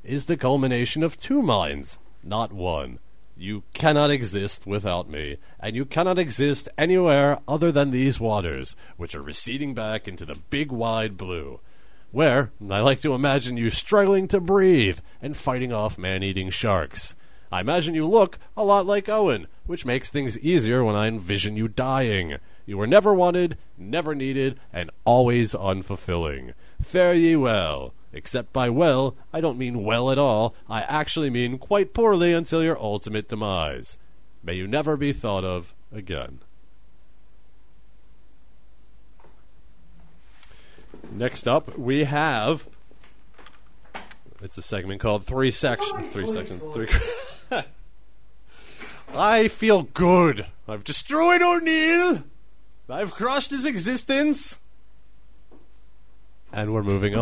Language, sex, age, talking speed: English, male, 40-59, 135 wpm